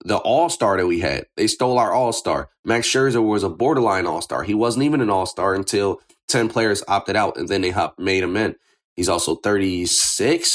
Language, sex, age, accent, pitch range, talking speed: English, male, 30-49, American, 100-125 Hz, 195 wpm